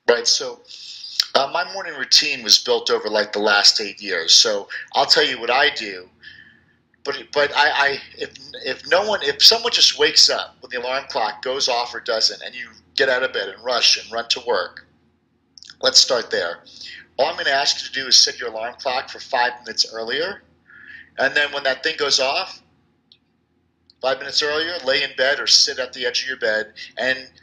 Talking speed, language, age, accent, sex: 210 wpm, English, 40-59, American, male